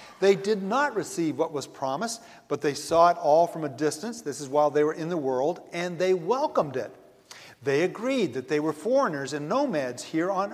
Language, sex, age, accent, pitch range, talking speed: English, male, 50-69, American, 170-255 Hz, 210 wpm